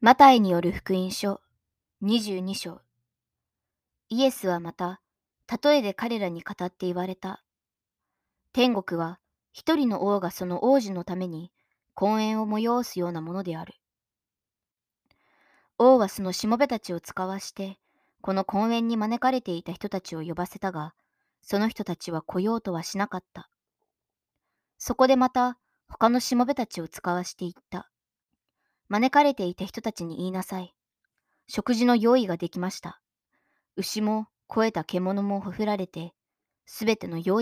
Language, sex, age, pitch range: Japanese, male, 20-39, 180-220 Hz